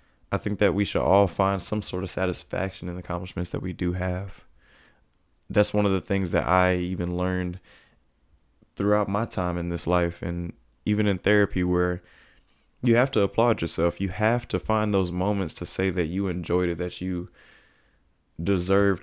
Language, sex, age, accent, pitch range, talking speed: English, male, 20-39, American, 85-105 Hz, 185 wpm